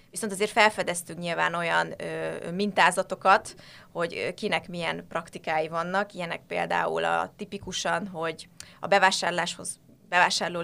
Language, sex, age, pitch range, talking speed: Hungarian, female, 20-39, 165-200 Hz, 115 wpm